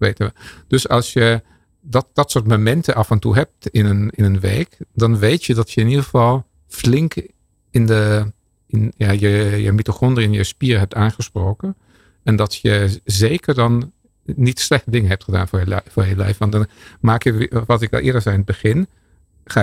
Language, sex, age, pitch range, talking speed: Dutch, male, 50-69, 105-125 Hz, 200 wpm